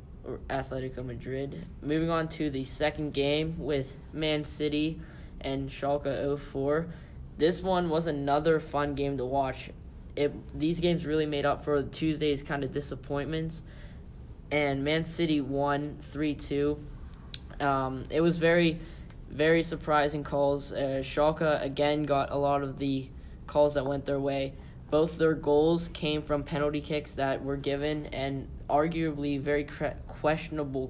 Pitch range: 135-150 Hz